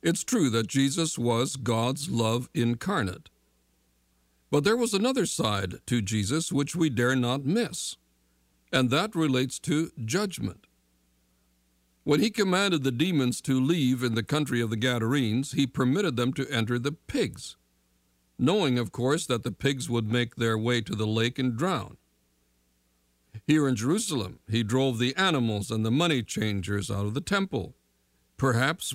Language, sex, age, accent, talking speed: English, male, 60-79, American, 160 wpm